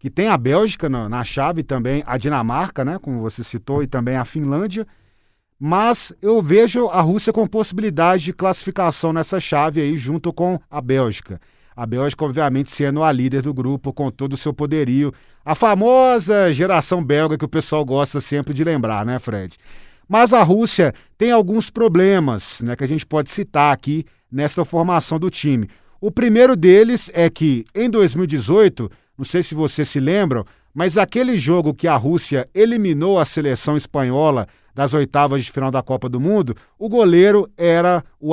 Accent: Brazilian